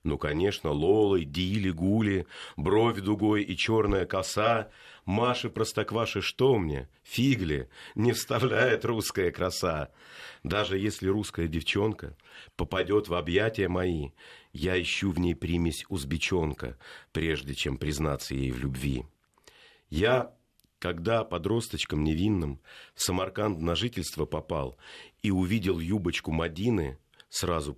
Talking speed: 115 wpm